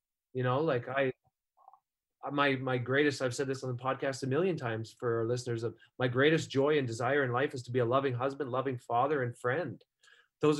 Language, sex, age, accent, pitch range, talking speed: English, male, 30-49, American, 125-150 Hz, 215 wpm